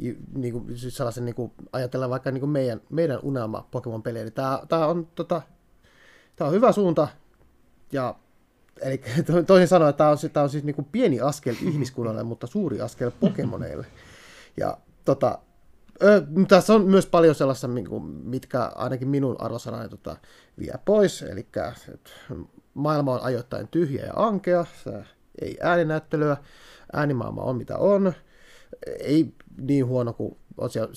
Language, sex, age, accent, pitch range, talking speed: Finnish, male, 30-49, native, 120-160 Hz, 140 wpm